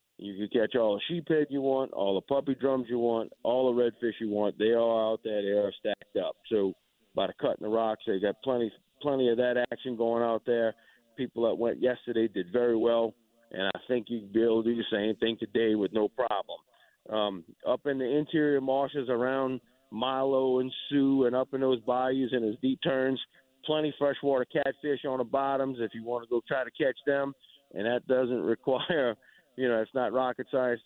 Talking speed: 220 wpm